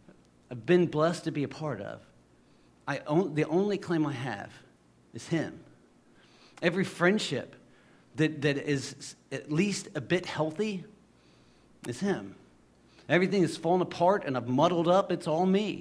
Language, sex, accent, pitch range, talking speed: English, male, American, 110-160 Hz, 150 wpm